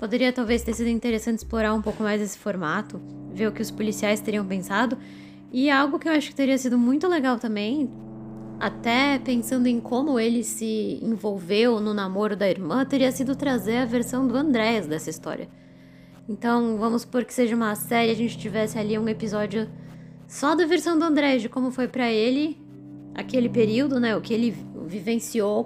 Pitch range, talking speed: 210-255 Hz, 185 wpm